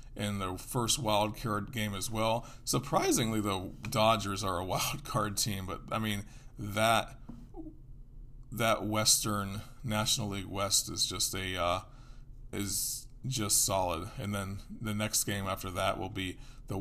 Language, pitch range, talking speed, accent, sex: English, 100-115 Hz, 150 wpm, American, male